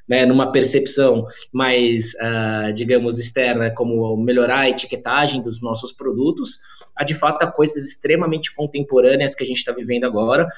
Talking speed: 145 wpm